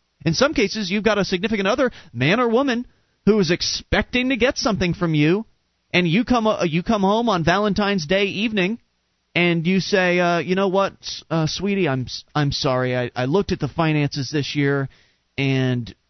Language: English